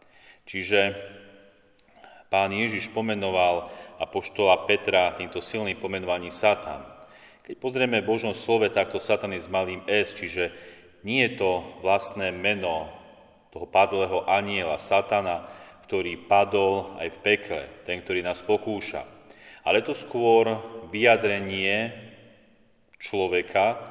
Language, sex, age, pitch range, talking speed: Slovak, male, 40-59, 95-110 Hz, 110 wpm